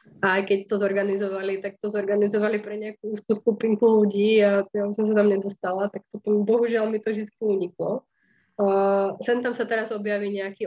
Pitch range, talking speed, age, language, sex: 195-220 Hz, 175 wpm, 20-39, Slovak, female